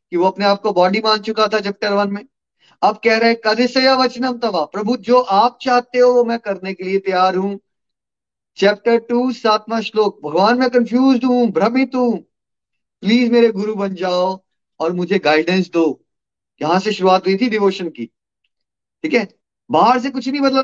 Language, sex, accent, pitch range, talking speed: Hindi, male, native, 170-235 Hz, 185 wpm